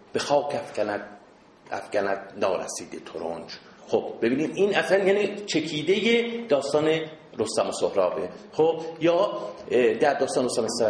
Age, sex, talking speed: 50-69, male, 115 wpm